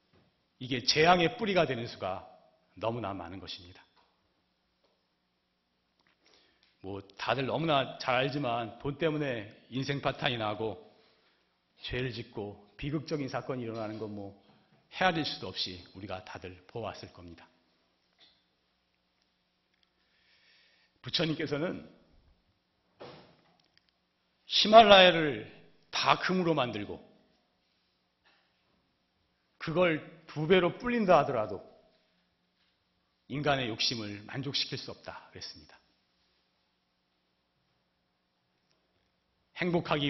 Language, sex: Korean, male